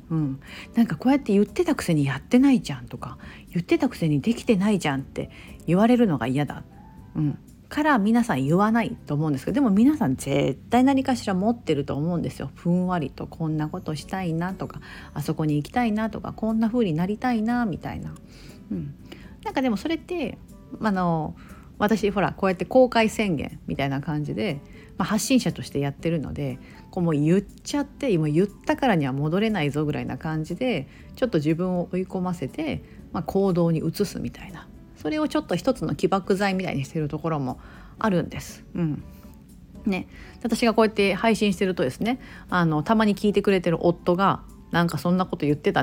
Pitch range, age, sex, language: 155-230 Hz, 40-59, female, Japanese